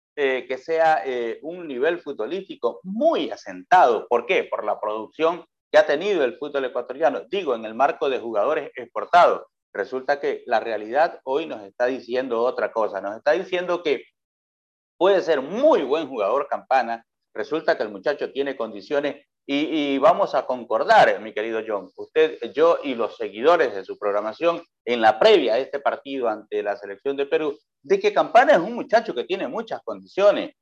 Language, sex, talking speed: Spanish, male, 180 wpm